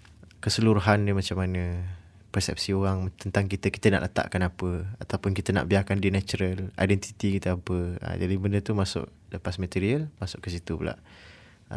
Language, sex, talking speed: English, male, 170 wpm